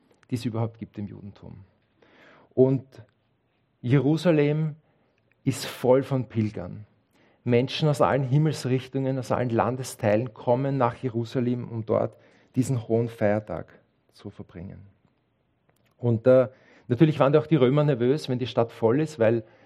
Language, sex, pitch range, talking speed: German, male, 110-130 Hz, 135 wpm